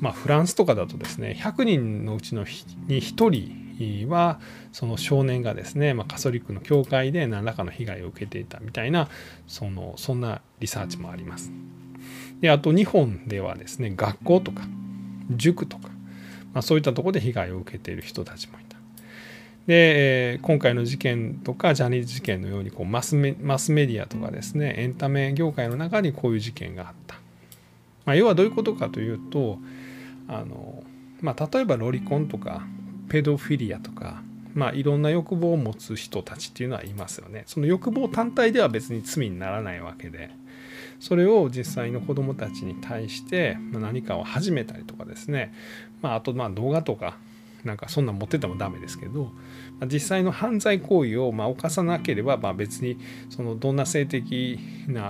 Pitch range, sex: 110-145 Hz, male